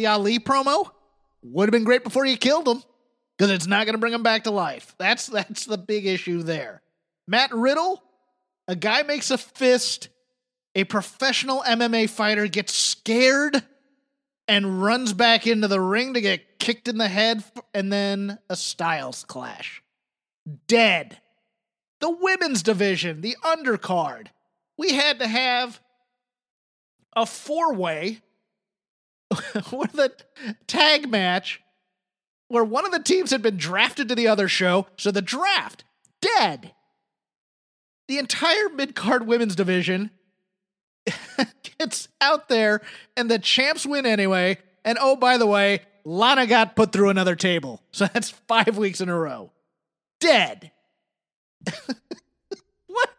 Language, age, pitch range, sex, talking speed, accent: English, 30-49, 200-255 Hz, male, 135 wpm, American